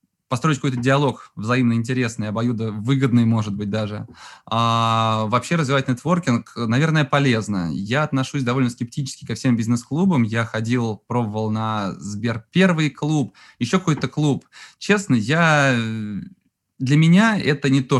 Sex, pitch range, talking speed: male, 115-135 Hz, 125 wpm